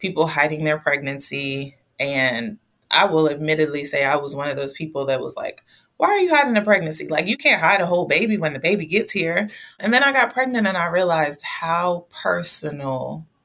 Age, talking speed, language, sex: 20-39, 205 wpm, English, female